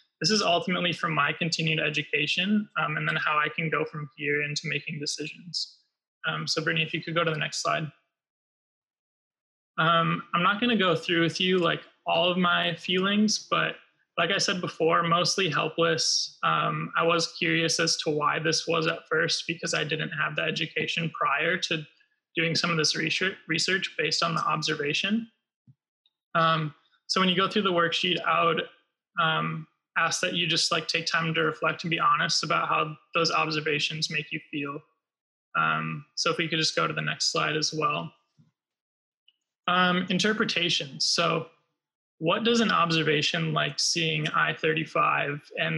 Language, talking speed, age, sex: English, 175 wpm, 20-39, male